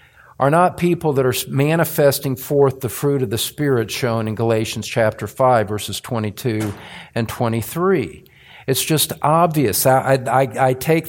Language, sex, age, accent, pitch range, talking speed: English, male, 50-69, American, 120-155 Hz, 150 wpm